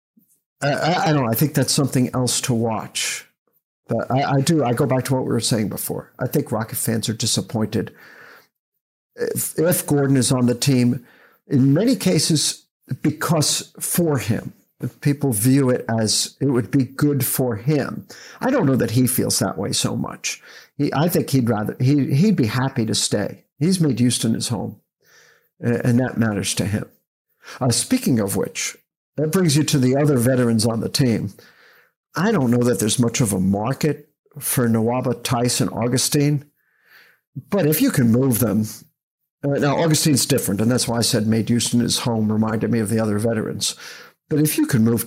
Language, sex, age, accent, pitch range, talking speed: English, male, 50-69, American, 115-145 Hz, 185 wpm